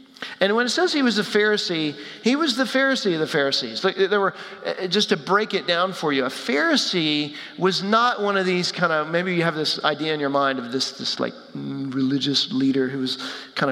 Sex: male